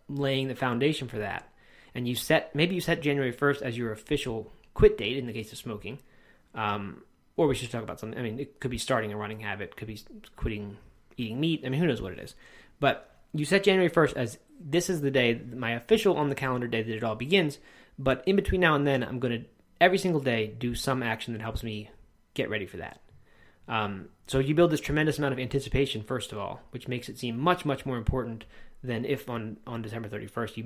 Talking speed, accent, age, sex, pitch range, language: 235 wpm, American, 20-39, male, 115-145 Hz, English